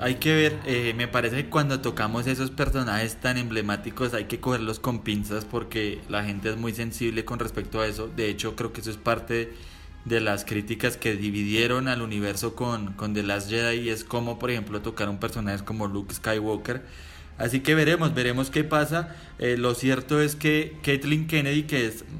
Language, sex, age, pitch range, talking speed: Spanish, male, 20-39, 110-145 Hz, 195 wpm